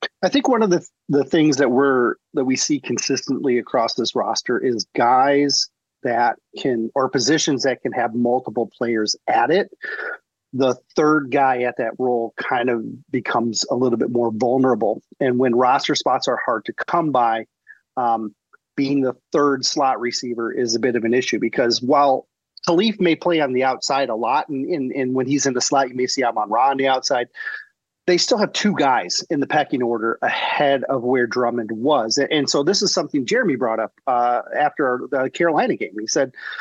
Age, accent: 40-59, American